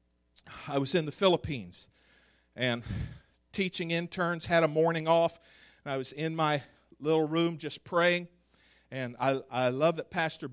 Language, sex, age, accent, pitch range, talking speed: English, male, 50-69, American, 140-185 Hz, 155 wpm